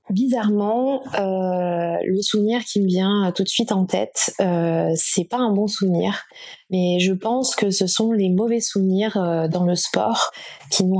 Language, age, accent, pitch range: French, 20-39, French, 175-215 Hz